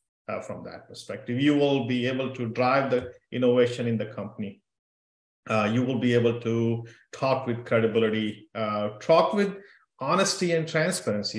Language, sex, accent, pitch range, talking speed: English, male, Indian, 115-150 Hz, 160 wpm